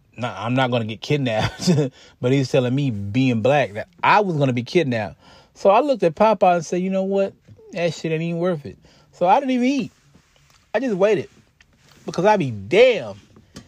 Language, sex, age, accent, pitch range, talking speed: English, male, 30-49, American, 125-180 Hz, 210 wpm